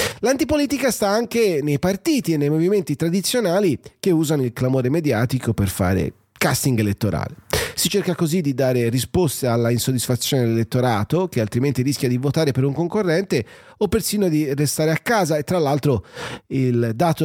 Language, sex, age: English, male, 30-49